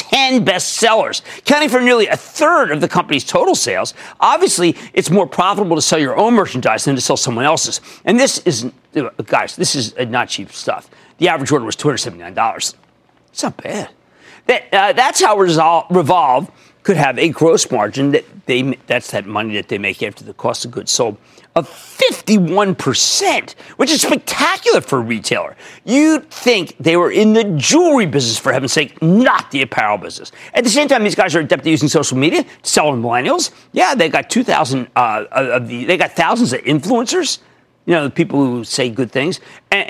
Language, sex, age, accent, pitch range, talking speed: English, male, 40-59, American, 150-235 Hz, 185 wpm